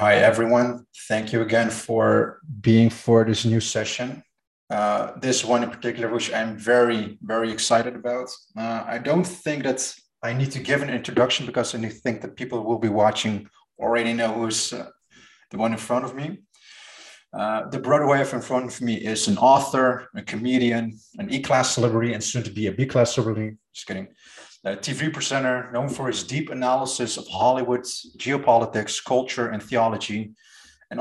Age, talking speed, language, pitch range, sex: 30-49, 175 wpm, English, 115-130 Hz, male